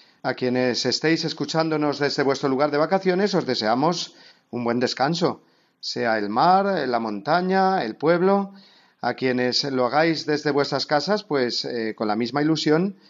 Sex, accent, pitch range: male, Spanish, 125-155 Hz